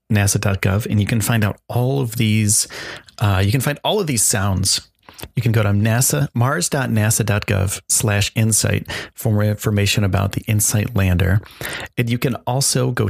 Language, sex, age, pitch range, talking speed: English, male, 30-49, 100-120 Hz, 170 wpm